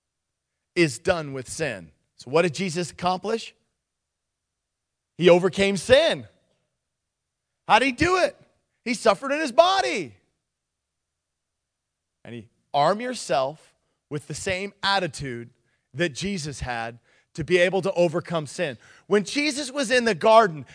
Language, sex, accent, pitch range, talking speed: English, male, American, 170-275 Hz, 130 wpm